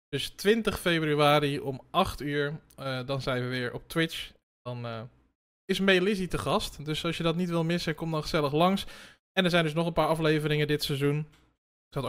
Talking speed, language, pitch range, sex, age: 215 wpm, Dutch, 145-170 Hz, male, 20-39